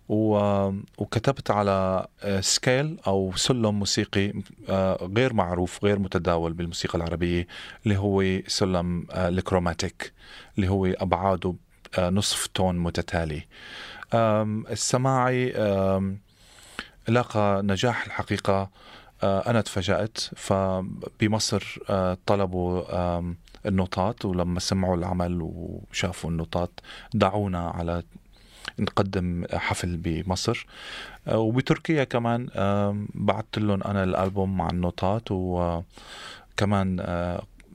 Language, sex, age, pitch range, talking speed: Arabic, male, 30-49, 90-110 Hz, 80 wpm